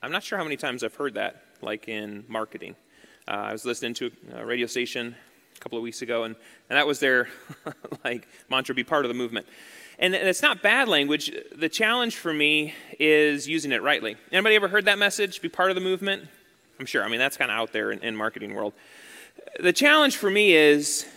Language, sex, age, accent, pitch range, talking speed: English, male, 30-49, American, 140-205 Hz, 225 wpm